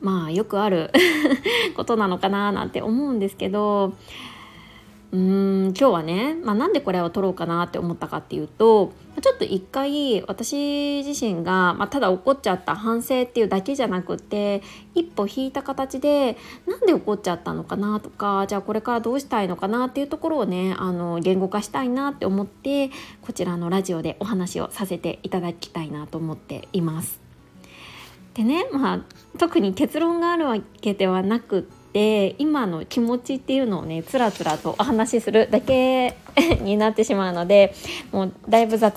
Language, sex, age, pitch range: Japanese, female, 20-39, 180-250 Hz